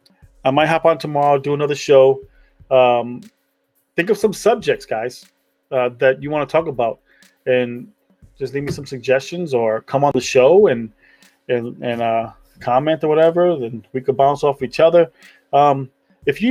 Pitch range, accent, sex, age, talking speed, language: 120-155 Hz, American, male, 30-49, 180 wpm, English